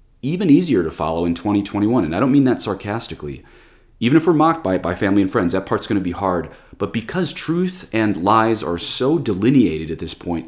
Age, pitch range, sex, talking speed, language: 30-49, 85-115 Hz, male, 220 wpm, English